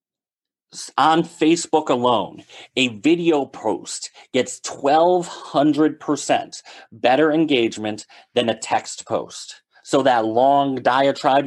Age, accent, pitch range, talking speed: 30-49, American, 120-155 Hz, 95 wpm